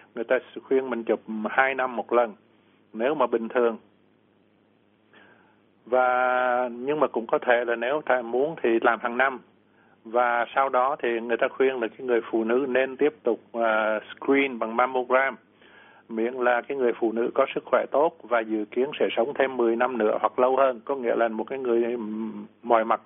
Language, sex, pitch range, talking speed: Vietnamese, male, 110-130 Hz, 195 wpm